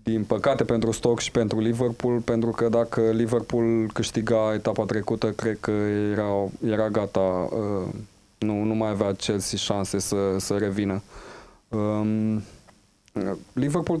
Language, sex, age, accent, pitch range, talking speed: Romanian, male, 20-39, native, 110-130 Hz, 125 wpm